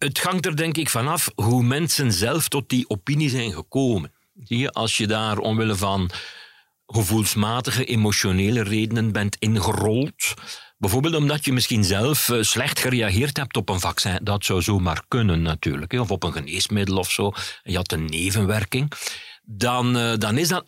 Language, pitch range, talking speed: Dutch, 100-135 Hz, 155 wpm